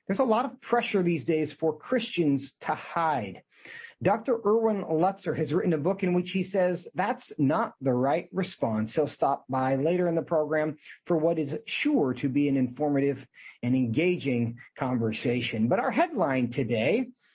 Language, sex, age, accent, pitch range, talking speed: English, male, 40-59, American, 135-180 Hz, 170 wpm